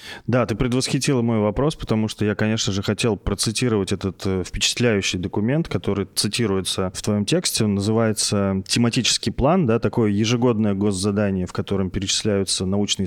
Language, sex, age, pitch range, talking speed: Russian, male, 20-39, 100-130 Hz, 145 wpm